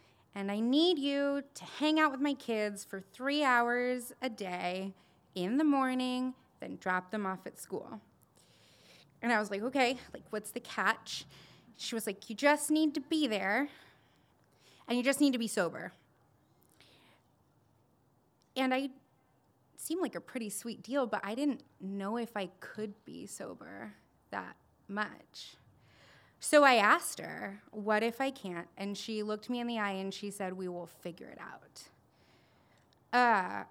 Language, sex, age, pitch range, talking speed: English, female, 20-39, 190-250 Hz, 165 wpm